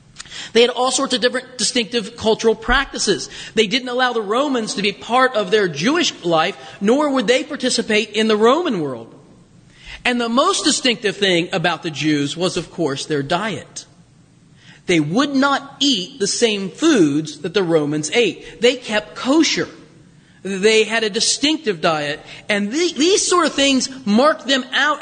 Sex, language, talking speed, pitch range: male, English, 165 wpm, 170-255 Hz